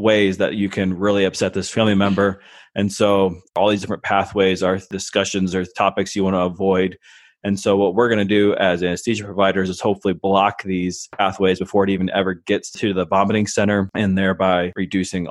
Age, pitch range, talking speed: 20-39, 90-100 Hz, 195 wpm